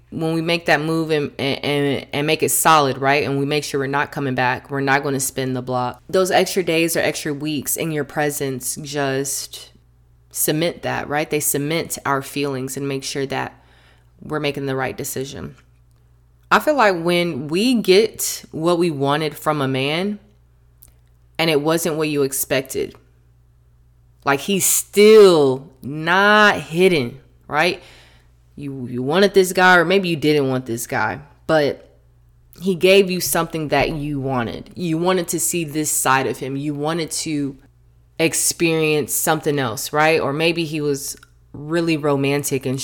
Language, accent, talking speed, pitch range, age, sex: English, American, 165 wpm, 130-160 Hz, 20-39, female